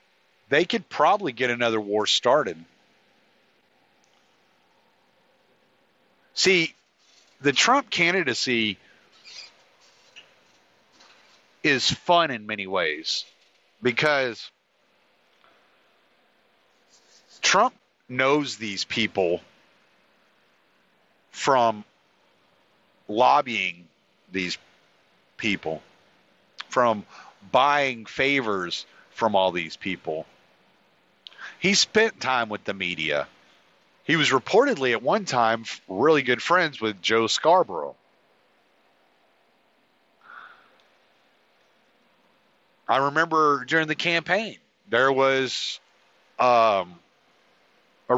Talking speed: 75 wpm